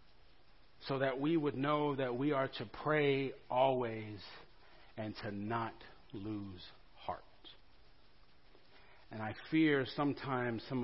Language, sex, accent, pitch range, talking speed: English, male, American, 115-165 Hz, 115 wpm